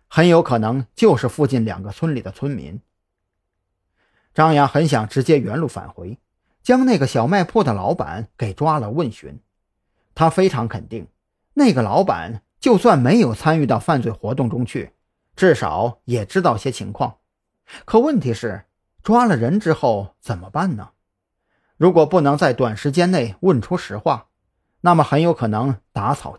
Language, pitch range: Chinese, 110-160 Hz